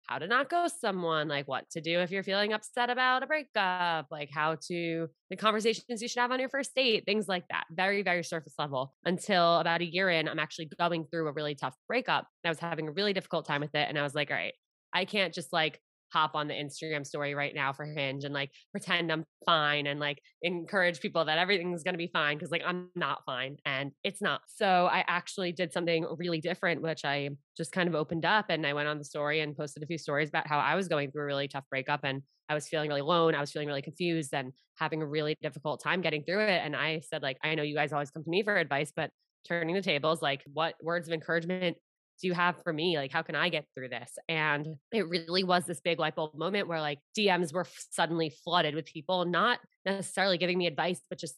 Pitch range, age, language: 150-180 Hz, 20-39, English